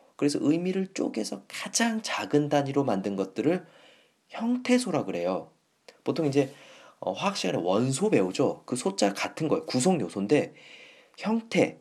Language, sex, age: Korean, male, 40-59